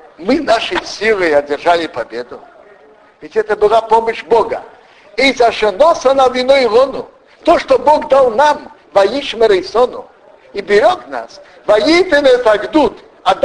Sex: male